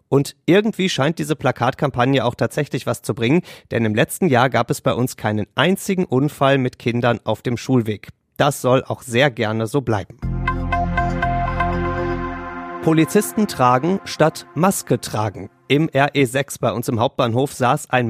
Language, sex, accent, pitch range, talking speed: German, male, German, 120-150 Hz, 155 wpm